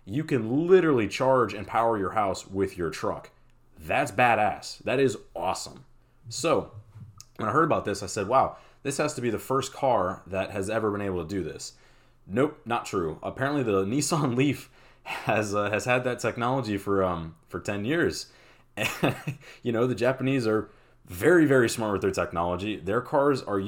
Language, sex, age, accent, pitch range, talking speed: English, male, 30-49, American, 95-130 Hz, 180 wpm